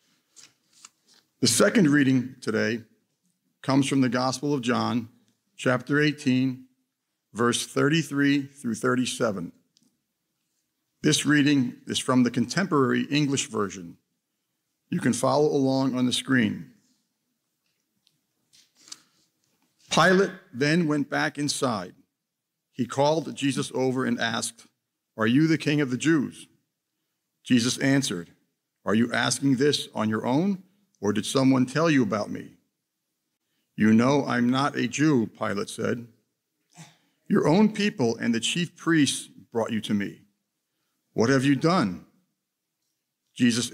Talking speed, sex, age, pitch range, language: 120 wpm, male, 50-69, 120-150 Hz, English